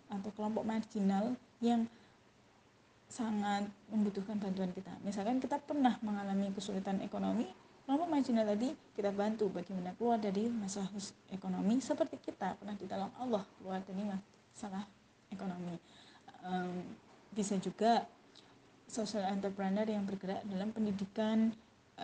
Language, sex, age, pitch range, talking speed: Indonesian, female, 20-39, 185-215 Hz, 115 wpm